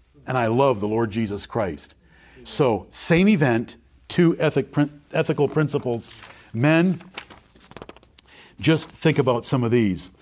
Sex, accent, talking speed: male, American, 115 wpm